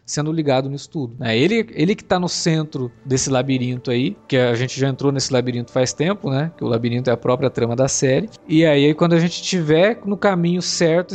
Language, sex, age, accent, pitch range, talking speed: Portuguese, male, 20-39, Brazilian, 130-170 Hz, 225 wpm